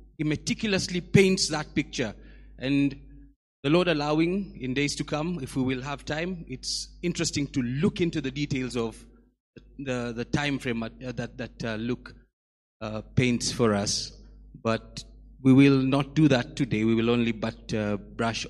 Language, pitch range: English, 110-140 Hz